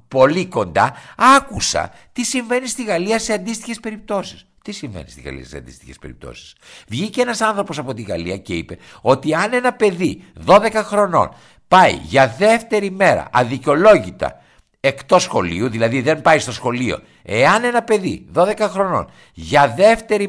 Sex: male